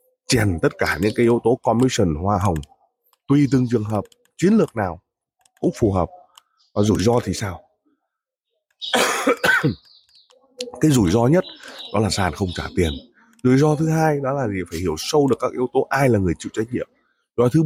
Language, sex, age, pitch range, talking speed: Vietnamese, male, 20-39, 100-145 Hz, 195 wpm